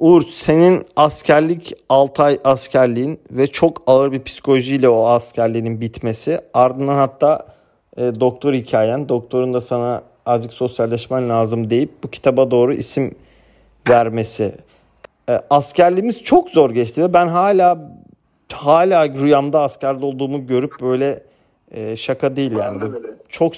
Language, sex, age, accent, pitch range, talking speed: Turkish, male, 40-59, native, 125-150 Hz, 130 wpm